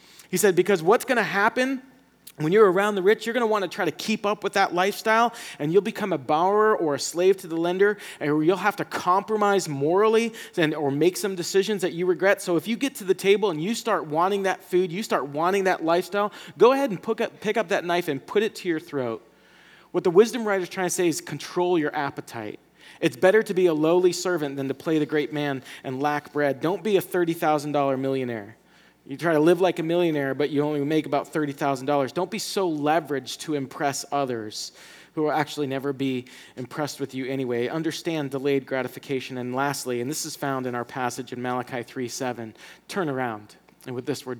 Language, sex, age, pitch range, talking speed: English, male, 30-49, 145-195 Hz, 225 wpm